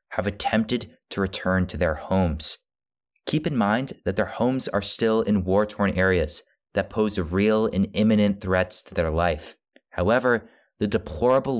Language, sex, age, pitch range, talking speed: English, male, 20-39, 85-105 Hz, 155 wpm